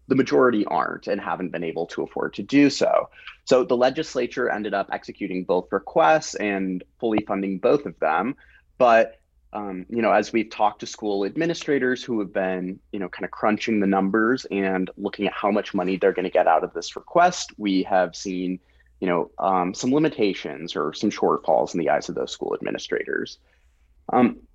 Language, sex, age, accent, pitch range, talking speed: English, male, 30-49, American, 90-110 Hz, 190 wpm